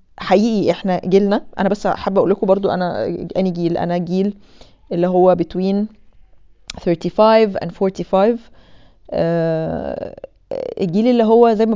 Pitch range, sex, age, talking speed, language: 180-210 Hz, female, 20-39, 135 wpm, Arabic